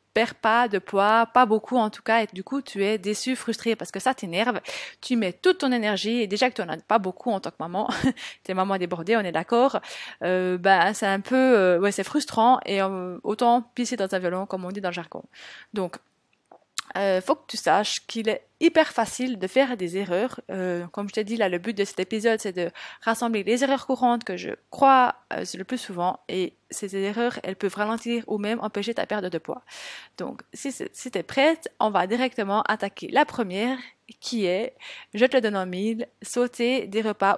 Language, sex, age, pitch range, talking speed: French, female, 20-39, 195-245 Hz, 225 wpm